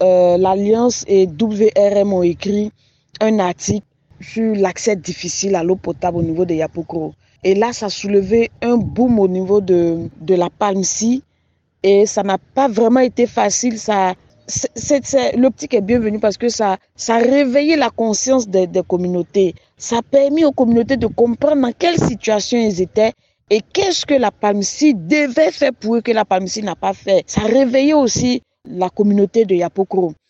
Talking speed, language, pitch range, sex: 180 wpm, French, 200-265 Hz, female